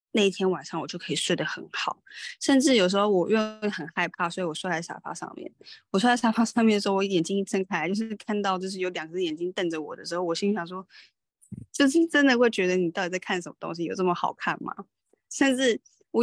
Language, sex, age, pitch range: Chinese, female, 20-39, 170-215 Hz